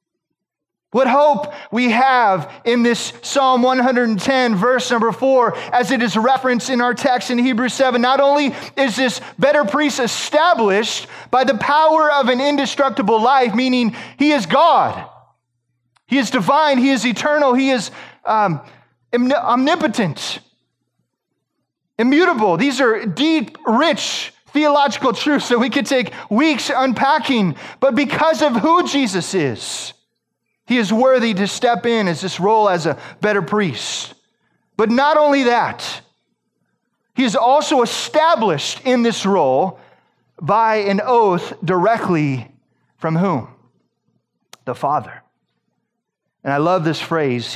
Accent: American